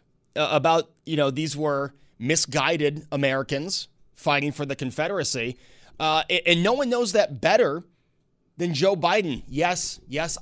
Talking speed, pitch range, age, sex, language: 145 wpm, 135-180 Hz, 30-49, male, English